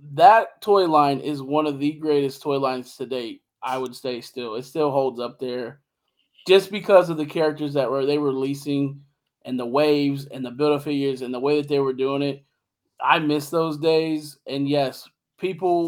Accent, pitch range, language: American, 135-155 Hz, English